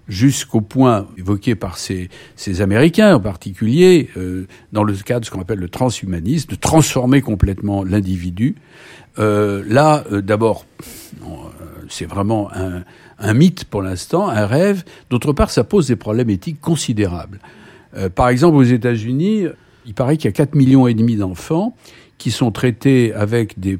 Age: 60-79